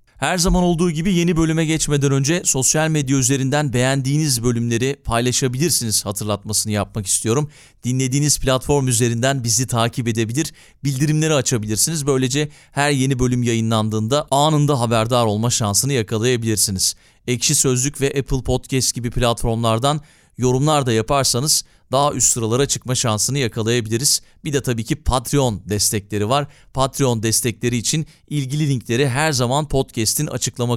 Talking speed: 130 wpm